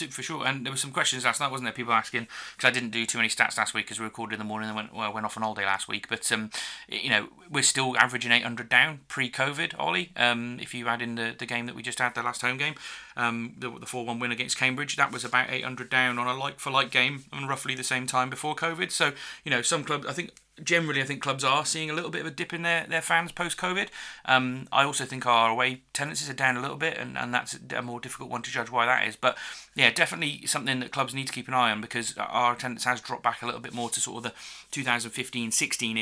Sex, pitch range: male, 110-135 Hz